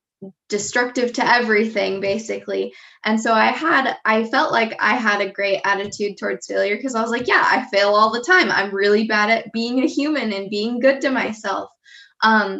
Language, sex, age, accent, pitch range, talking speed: English, female, 10-29, American, 195-230 Hz, 195 wpm